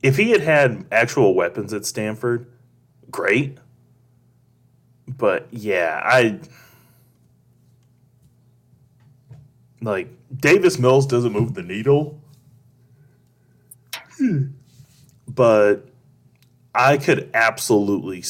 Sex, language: male, English